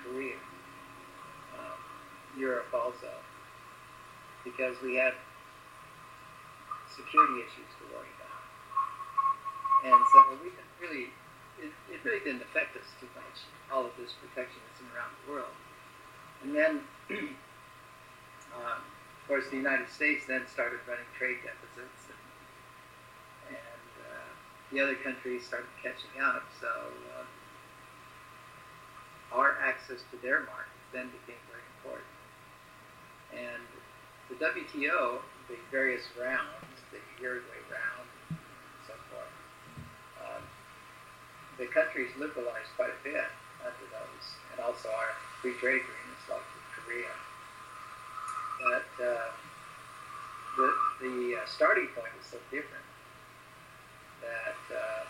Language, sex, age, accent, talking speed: English, male, 50-69, American, 110 wpm